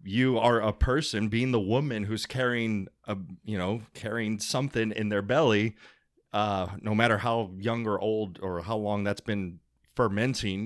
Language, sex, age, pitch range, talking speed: English, male, 30-49, 105-145 Hz, 165 wpm